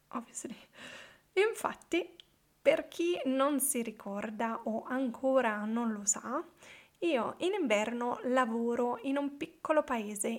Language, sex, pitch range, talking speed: Italian, female, 235-300 Hz, 115 wpm